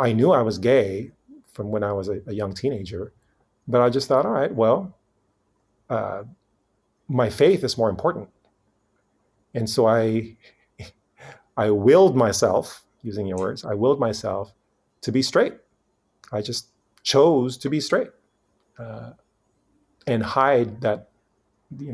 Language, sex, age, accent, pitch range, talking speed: English, male, 30-49, American, 100-130 Hz, 140 wpm